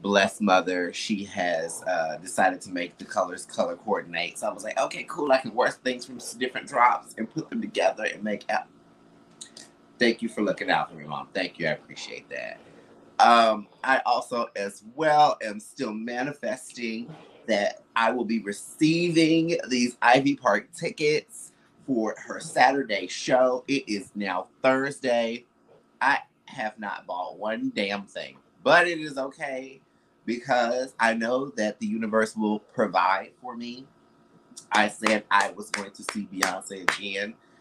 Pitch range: 110-160 Hz